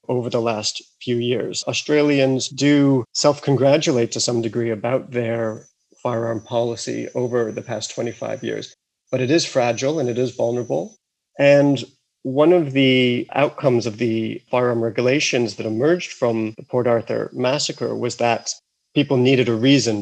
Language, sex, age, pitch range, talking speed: English, male, 40-59, 115-135 Hz, 150 wpm